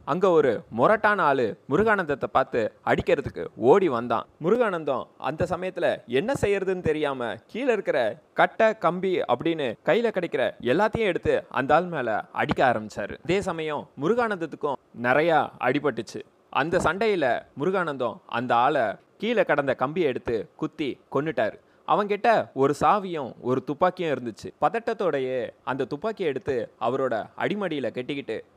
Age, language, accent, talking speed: 20-39, Tamil, native, 120 wpm